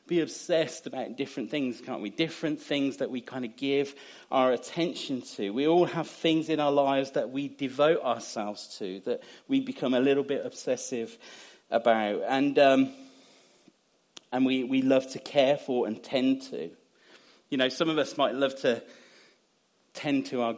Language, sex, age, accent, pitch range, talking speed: English, male, 30-49, British, 115-140 Hz, 180 wpm